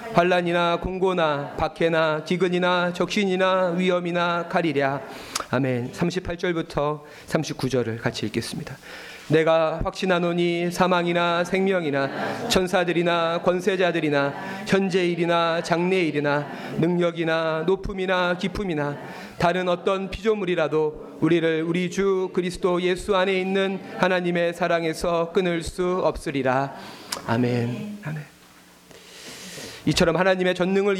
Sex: male